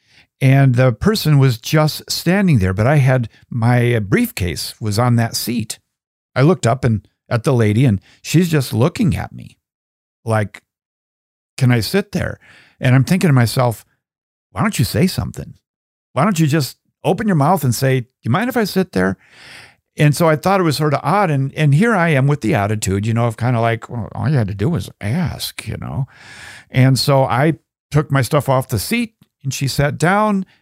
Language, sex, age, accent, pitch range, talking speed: English, male, 50-69, American, 115-160 Hz, 210 wpm